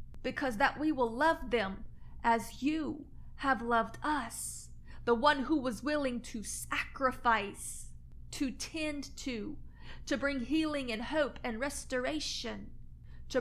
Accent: American